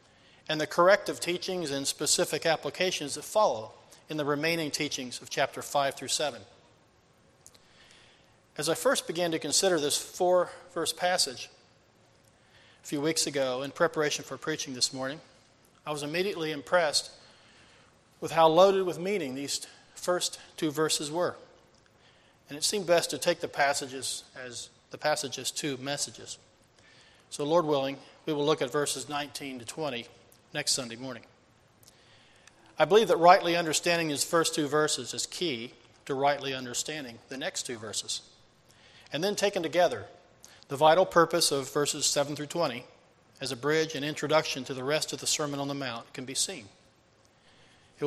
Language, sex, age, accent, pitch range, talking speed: English, male, 40-59, American, 135-165 Hz, 155 wpm